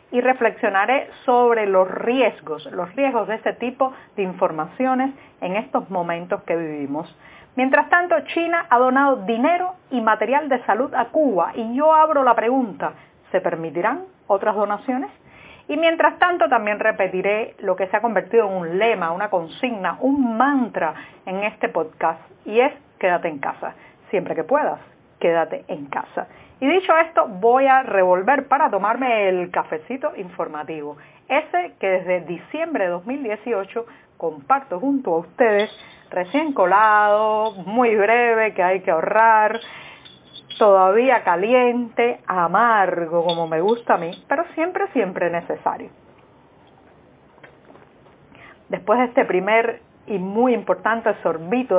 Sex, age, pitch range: female, 40-59, 185-260 Hz